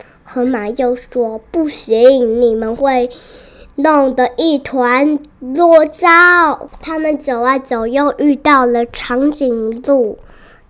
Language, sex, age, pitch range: Chinese, male, 10-29, 245-305 Hz